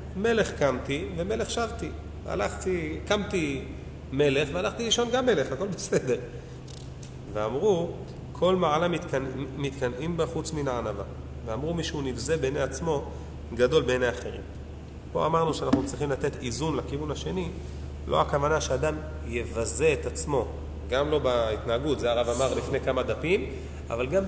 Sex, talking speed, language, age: male, 135 wpm, Hebrew, 30-49